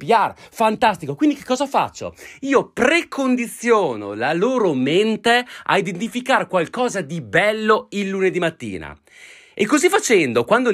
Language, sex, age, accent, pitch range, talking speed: Italian, male, 30-49, native, 175-255 Hz, 125 wpm